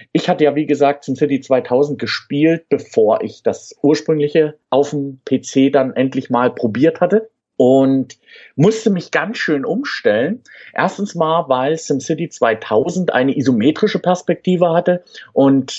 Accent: German